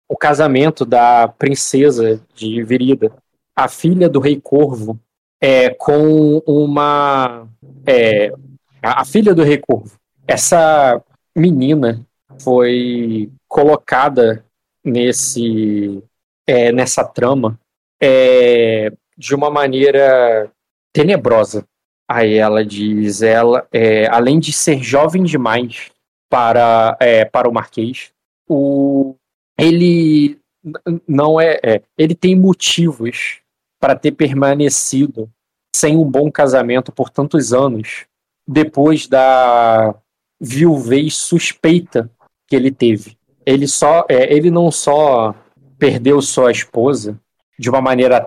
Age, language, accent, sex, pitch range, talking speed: 20-39, Portuguese, Brazilian, male, 115-150 Hz, 100 wpm